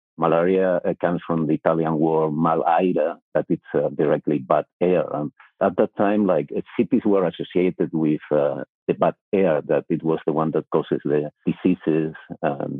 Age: 50-69